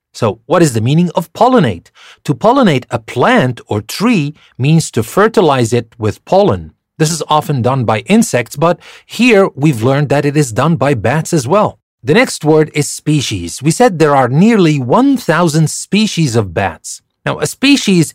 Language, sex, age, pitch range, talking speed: English, male, 40-59, 115-170 Hz, 180 wpm